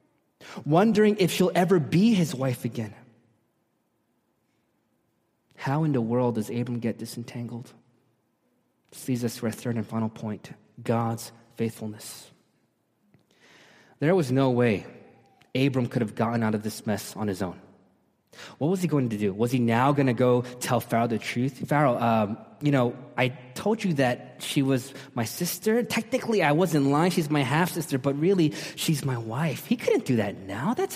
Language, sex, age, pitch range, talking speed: English, male, 20-39, 115-160 Hz, 170 wpm